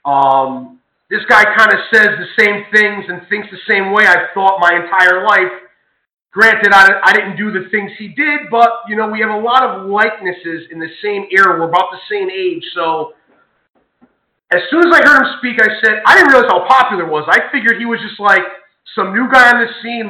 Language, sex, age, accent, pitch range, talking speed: English, male, 30-49, American, 185-235 Hz, 225 wpm